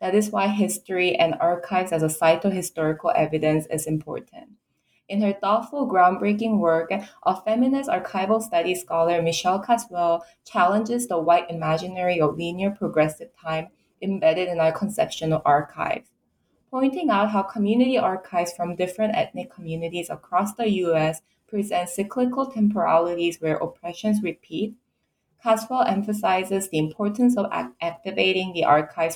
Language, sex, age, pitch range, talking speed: English, female, 20-39, 165-210 Hz, 135 wpm